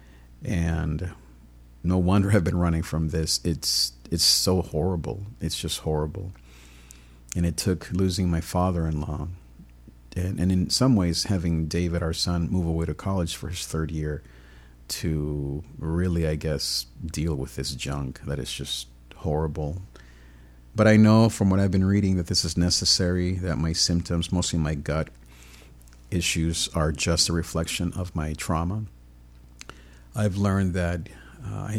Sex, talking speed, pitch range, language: male, 150 wpm, 70-90 Hz, English